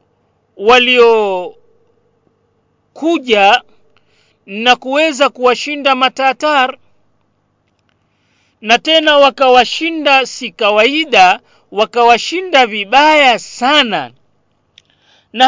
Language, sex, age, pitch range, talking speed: Swahili, male, 40-59, 170-270 Hz, 60 wpm